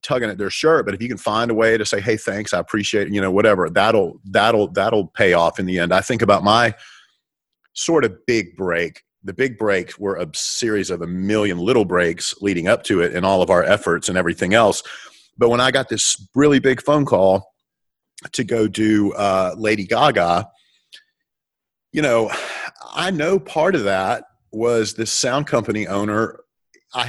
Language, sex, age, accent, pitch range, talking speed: English, male, 40-59, American, 100-120 Hz, 195 wpm